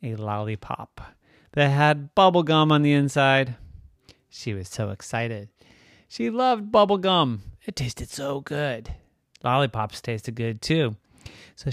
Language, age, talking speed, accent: English, 30-49, 125 wpm, American